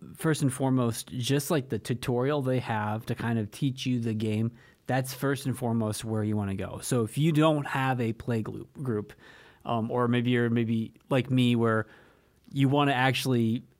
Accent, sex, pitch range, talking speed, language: American, male, 115-135 Hz, 195 wpm, English